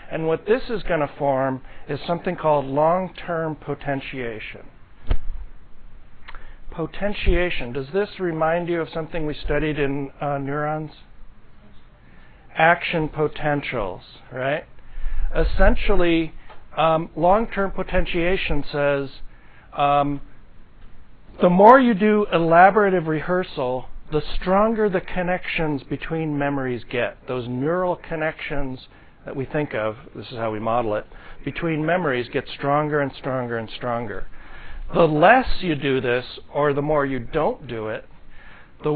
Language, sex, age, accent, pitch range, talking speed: English, male, 60-79, American, 130-170 Hz, 120 wpm